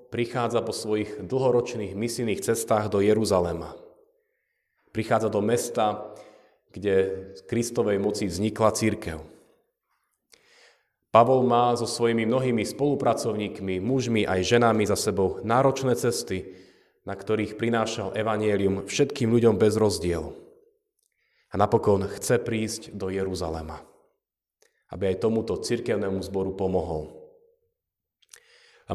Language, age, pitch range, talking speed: Slovak, 30-49, 100-130 Hz, 105 wpm